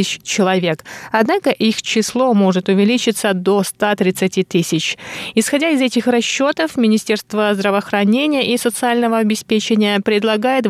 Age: 20-39